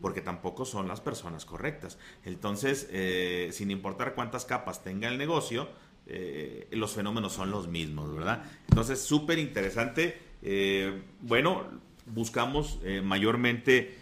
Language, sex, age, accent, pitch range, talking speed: Spanish, male, 40-59, Mexican, 90-110 Hz, 130 wpm